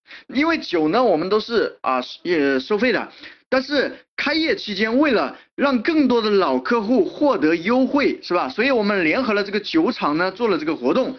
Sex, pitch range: male, 210-290 Hz